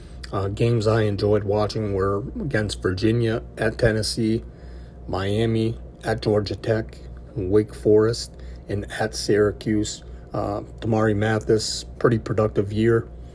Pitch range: 90-110 Hz